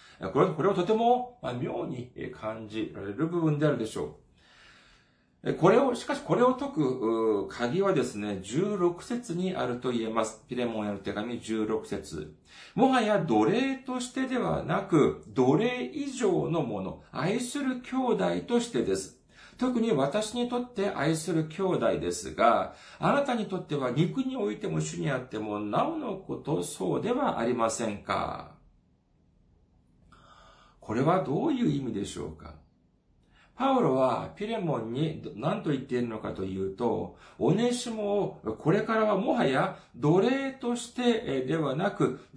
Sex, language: male, Japanese